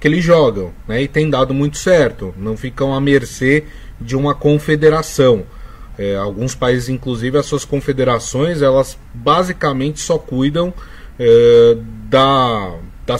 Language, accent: Portuguese, Brazilian